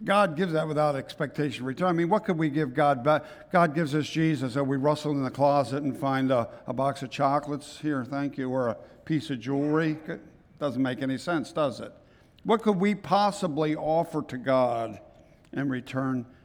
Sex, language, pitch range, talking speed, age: male, English, 125-155 Hz, 200 wpm, 60-79